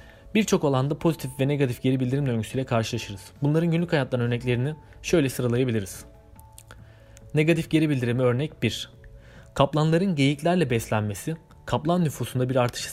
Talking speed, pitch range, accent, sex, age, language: 125 wpm, 110-145 Hz, native, male, 30-49, Turkish